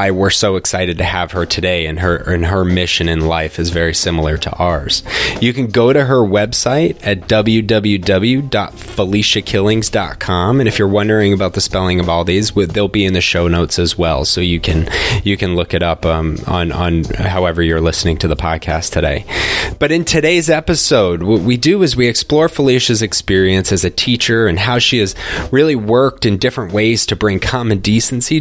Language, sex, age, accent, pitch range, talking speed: English, male, 20-39, American, 90-120 Hz, 190 wpm